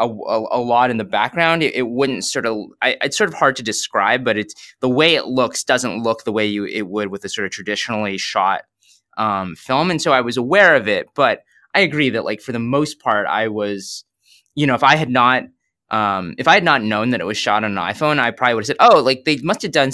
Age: 20-39